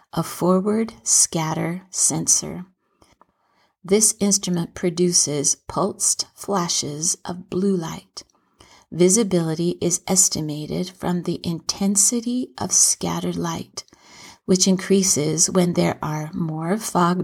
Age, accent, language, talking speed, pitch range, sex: 50-69, American, English, 95 wpm, 160-190 Hz, female